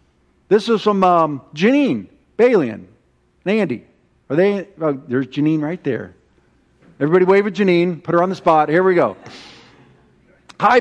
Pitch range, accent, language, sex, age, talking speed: 155-190 Hz, American, English, male, 50-69, 155 wpm